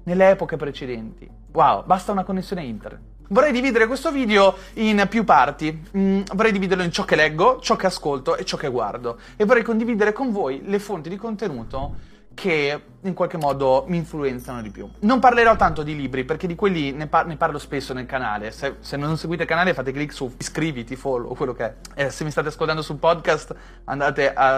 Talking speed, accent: 210 wpm, native